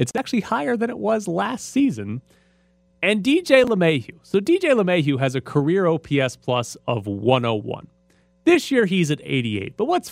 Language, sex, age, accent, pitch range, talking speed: English, male, 30-49, American, 115-195 Hz, 165 wpm